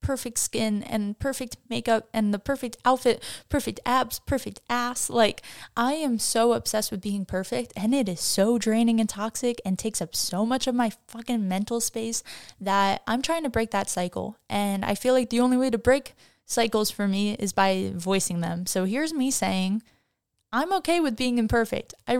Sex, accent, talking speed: female, American, 190 wpm